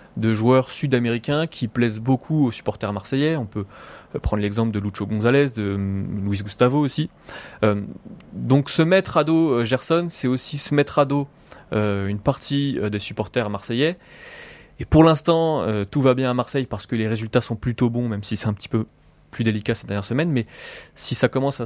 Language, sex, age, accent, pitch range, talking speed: French, male, 20-39, French, 105-140 Hz, 200 wpm